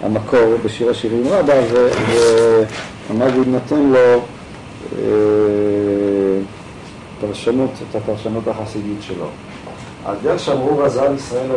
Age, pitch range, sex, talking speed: 50-69, 105-130 Hz, male, 90 wpm